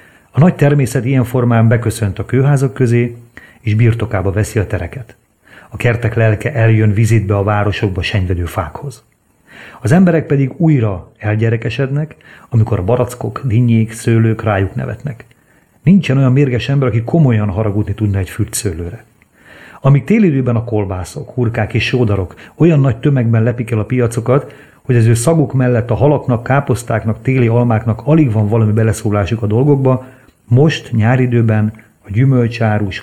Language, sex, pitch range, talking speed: Hungarian, male, 105-125 Hz, 145 wpm